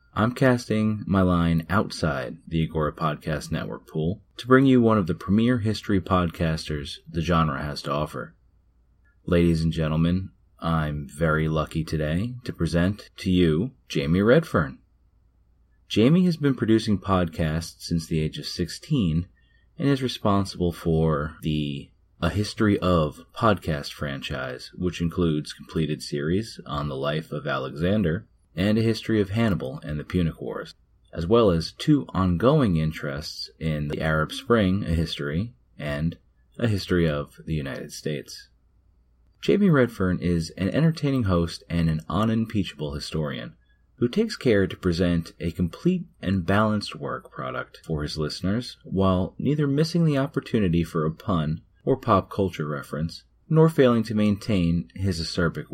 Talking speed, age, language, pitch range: 145 wpm, 30-49, English, 80-105 Hz